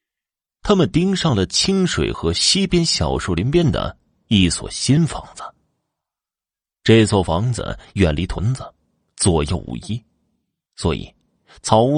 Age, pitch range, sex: 30-49, 90-135 Hz, male